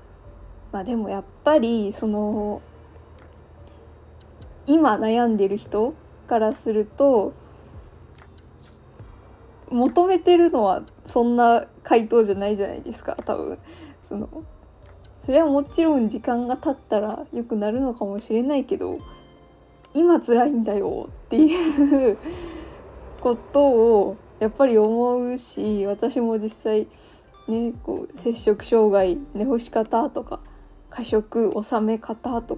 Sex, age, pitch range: female, 20-39, 205-265 Hz